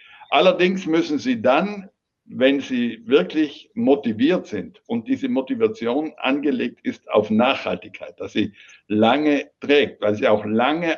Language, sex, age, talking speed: German, male, 60-79, 130 wpm